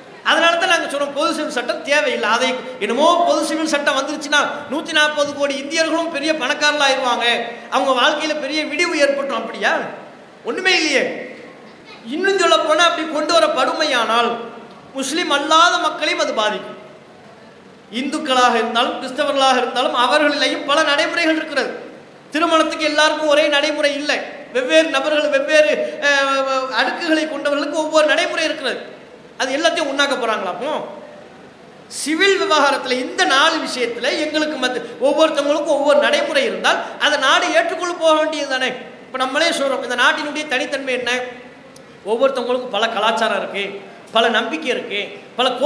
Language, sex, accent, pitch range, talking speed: English, male, Indian, 255-315 Hz, 105 wpm